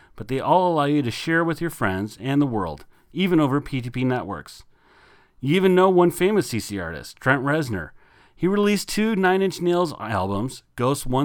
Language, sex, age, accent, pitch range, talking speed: English, male, 40-59, American, 115-165 Hz, 180 wpm